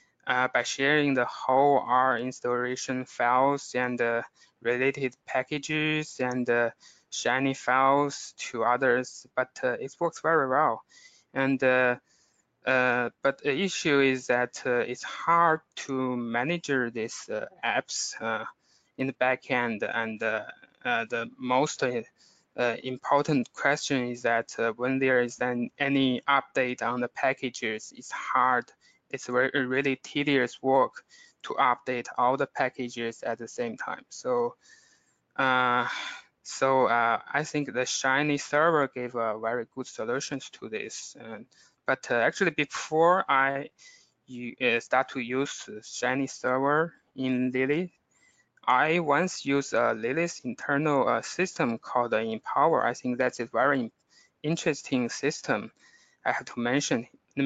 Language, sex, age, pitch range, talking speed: English, male, 20-39, 125-145 Hz, 140 wpm